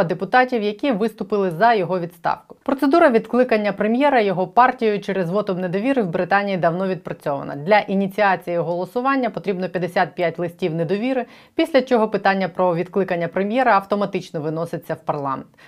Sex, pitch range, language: female, 175-225 Hz, Ukrainian